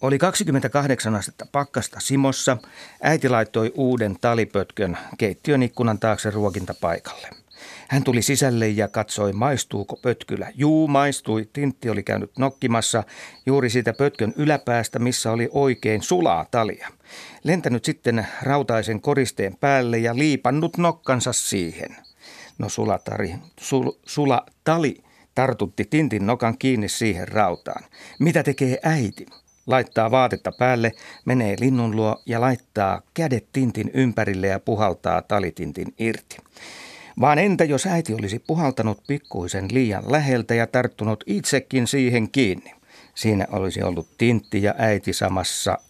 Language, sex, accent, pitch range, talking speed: Finnish, male, native, 105-135 Hz, 120 wpm